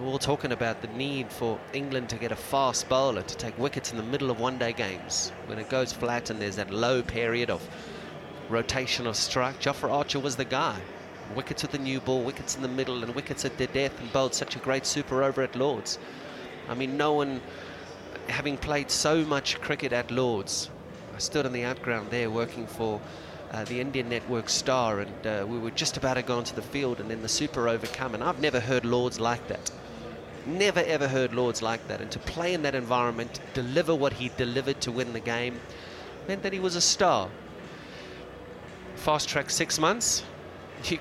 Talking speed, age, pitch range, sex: 205 wpm, 30-49, 115-140 Hz, male